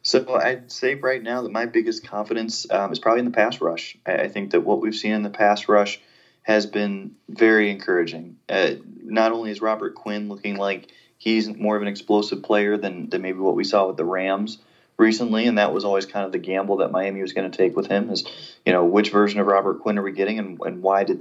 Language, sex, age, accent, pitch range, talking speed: English, male, 20-39, American, 95-110 Hz, 240 wpm